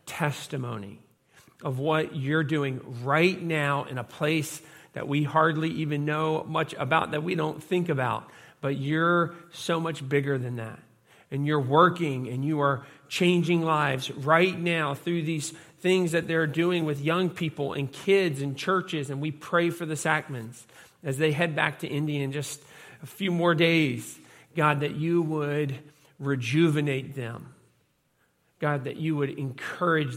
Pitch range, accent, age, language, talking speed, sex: 140-160 Hz, American, 40-59, English, 160 wpm, male